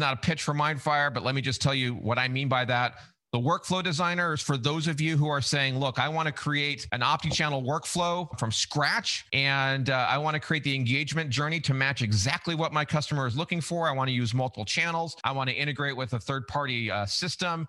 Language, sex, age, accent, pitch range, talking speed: English, male, 40-59, American, 125-160 Hz, 245 wpm